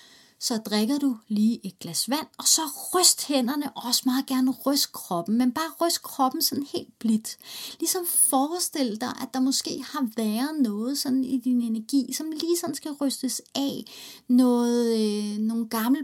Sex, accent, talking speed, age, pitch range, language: female, native, 170 wpm, 30-49, 230-290 Hz, Danish